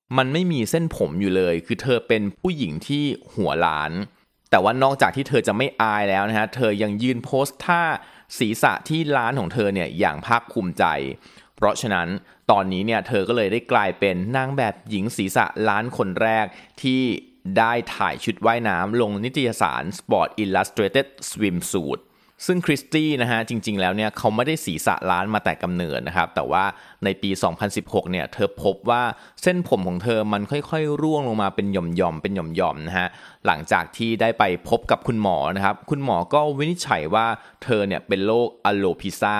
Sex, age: male, 20-39